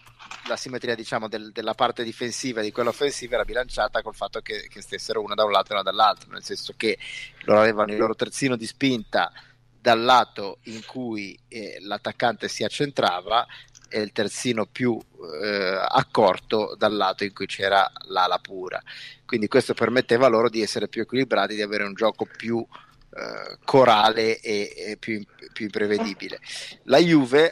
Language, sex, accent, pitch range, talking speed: Italian, male, native, 105-135 Hz, 170 wpm